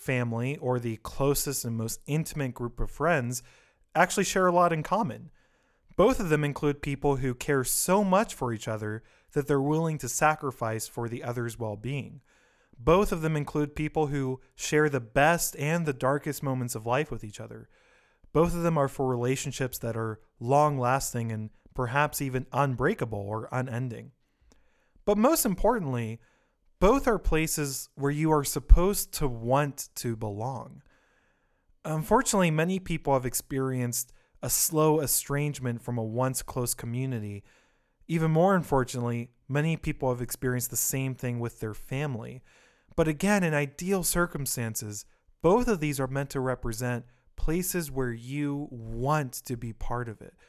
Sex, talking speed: male, 155 wpm